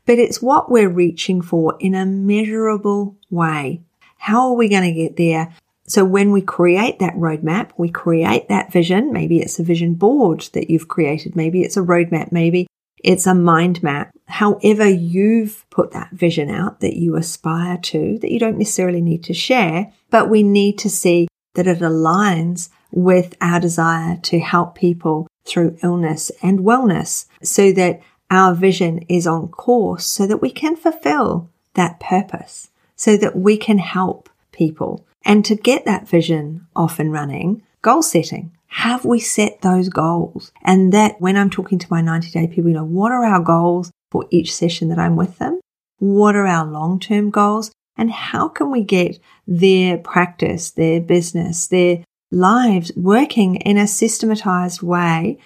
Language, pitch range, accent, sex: English, 170-205 Hz, Australian, female